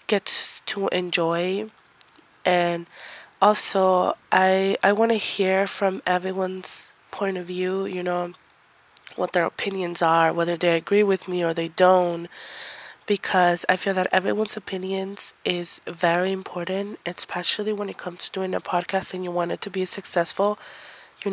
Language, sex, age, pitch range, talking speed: English, female, 20-39, 170-195 Hz, 150 wpm